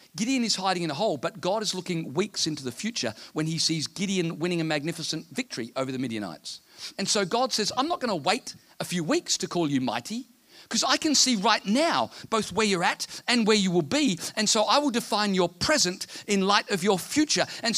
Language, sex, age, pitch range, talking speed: English, male, 50-69, 160-235 Hz, 235 wpm